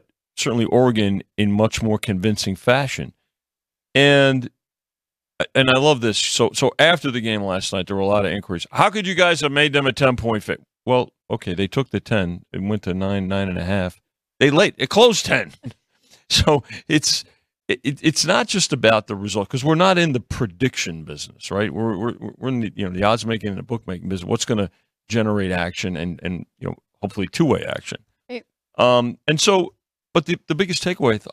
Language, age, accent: English, 40-59, American